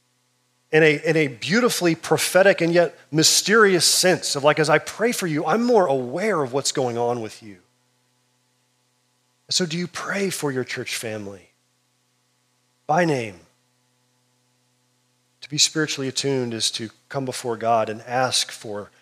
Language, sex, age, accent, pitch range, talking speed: English, male, 40-59, American, 125-160 Hz, 150 wpm